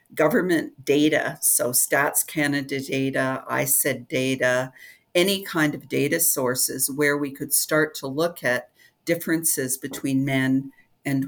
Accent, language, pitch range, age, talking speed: American, English, 135-160 Hz, 50-69, 135 wpm